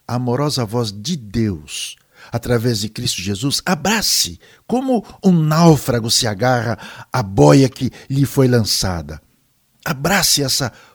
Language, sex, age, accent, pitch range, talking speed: Portuguese, male, 60-79, Brazilian, 115-155 Hz, 120 wpm